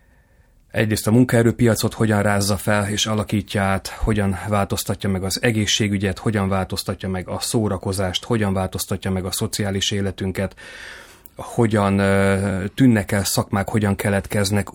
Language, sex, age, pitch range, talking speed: Hungarian, male, 30-49, 95-115 Hz, 125 wpm